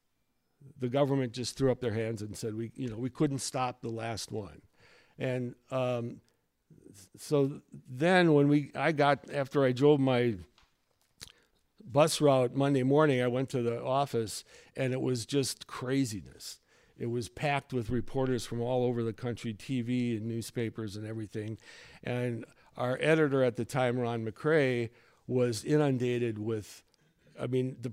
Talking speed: 155 wpm